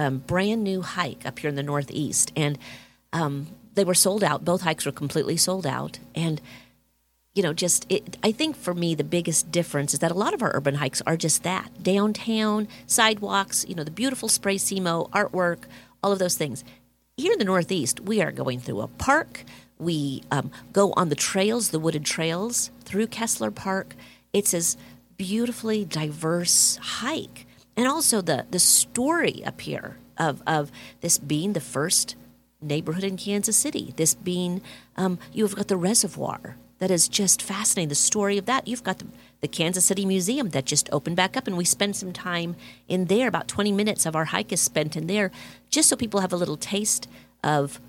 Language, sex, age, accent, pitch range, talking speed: English, female, 40-59, American, 150-200 Hz, 190 wpm